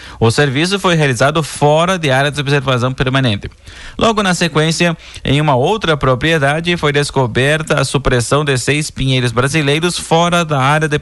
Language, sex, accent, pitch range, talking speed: Portuguese, male, Brazilian, 130-160 Hz, 160 wpm